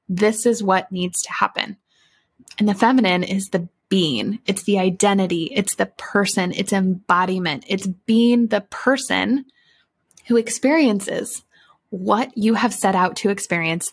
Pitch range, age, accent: 195-240 Hz, 20-39, American